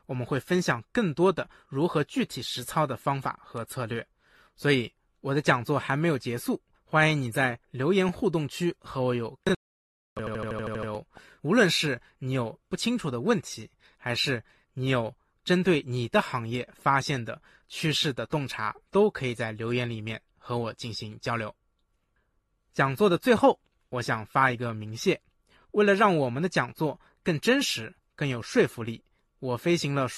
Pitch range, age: 120-155 Hz, 20-39